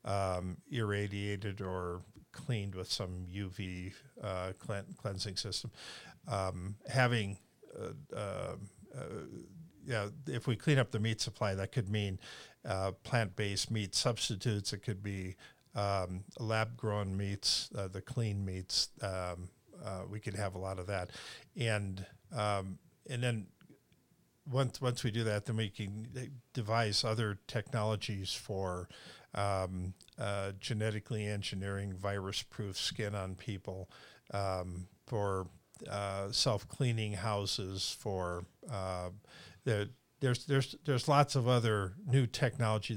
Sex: male